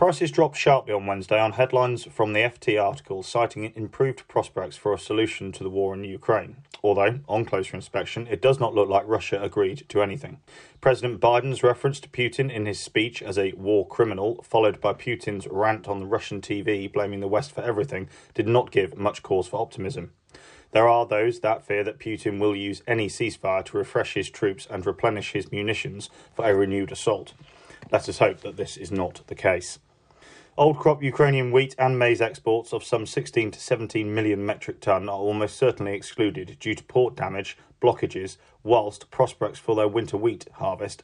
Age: 30-49